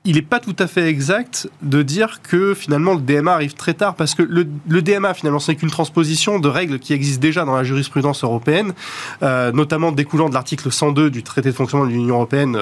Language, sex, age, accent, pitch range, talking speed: French, male, 20-39, French, 145-195 Hz, 225 wpm